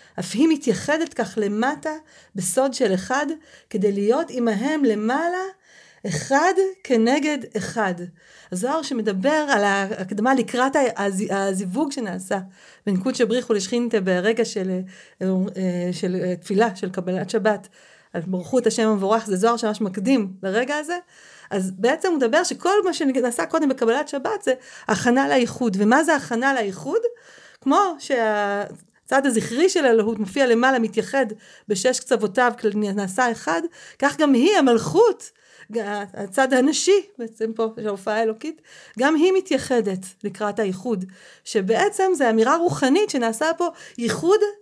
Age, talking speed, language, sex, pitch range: 40-59, 130 wpm, Hebrew, female, 205-280 Hz